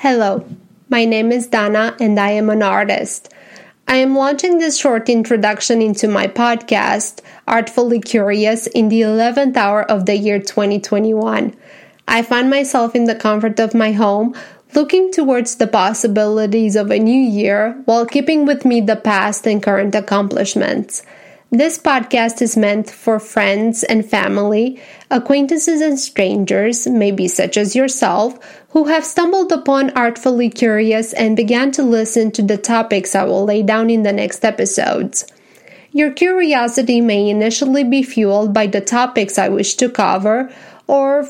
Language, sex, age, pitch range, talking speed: English, female, 20-39, 210-265 Hz, 155 wpm